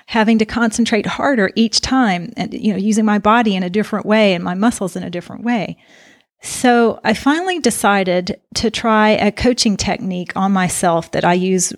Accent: American